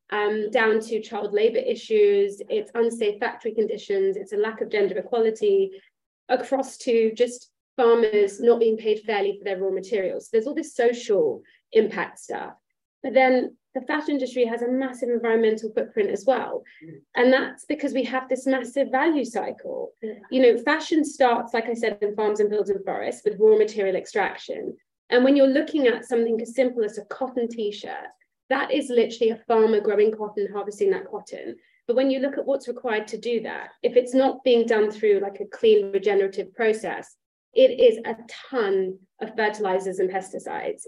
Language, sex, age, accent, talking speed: English, female, 30-49, British, 180 wpm